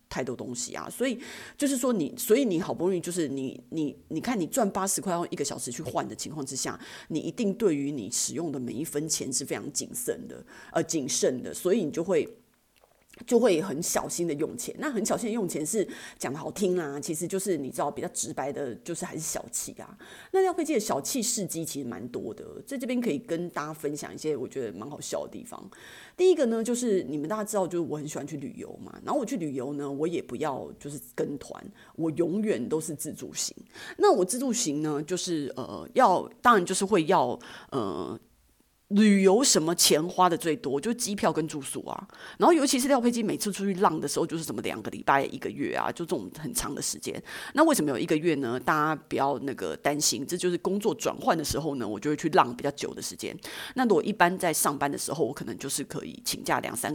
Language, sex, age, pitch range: Chinese, female, 30-49, 155-230 Hz